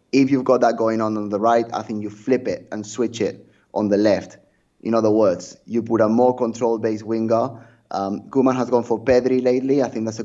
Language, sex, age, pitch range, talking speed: English, male, 20-39, 100-115 Hz, 235 wpm